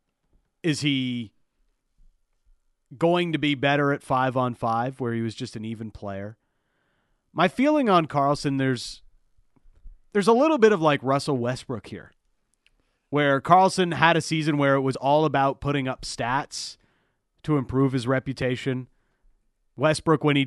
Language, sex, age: English, male, 30-49